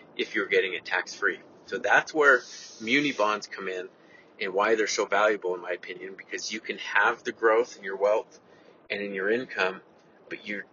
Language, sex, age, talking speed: English, male, 30-49, 195 wpm